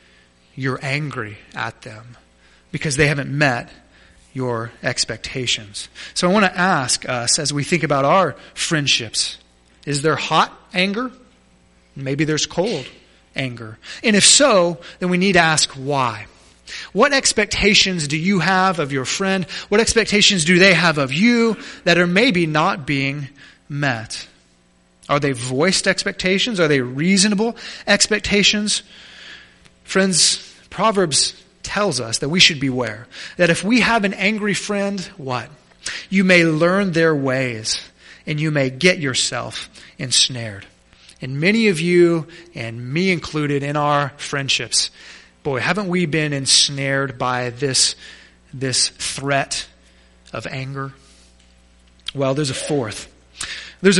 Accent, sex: American, male